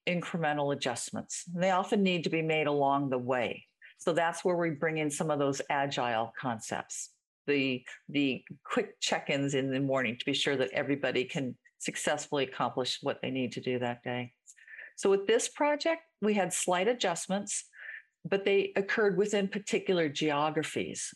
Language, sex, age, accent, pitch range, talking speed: English, female, 50-69, American, 140-185 Hz, 165 wpm